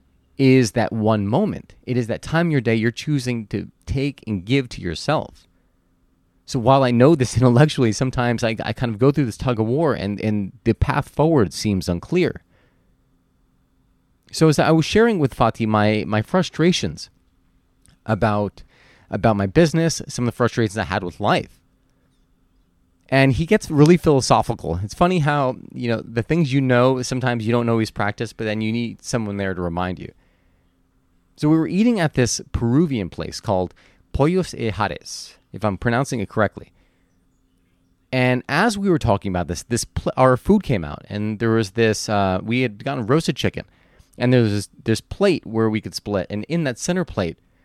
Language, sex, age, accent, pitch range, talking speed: English, male, 30-49, American, 90-130 Hz, 185 wpm